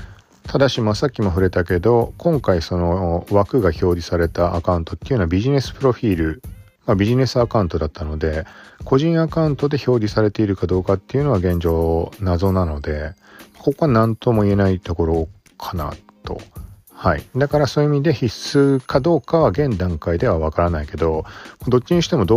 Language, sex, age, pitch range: Japanese, male, 40-59, 85-125 Hz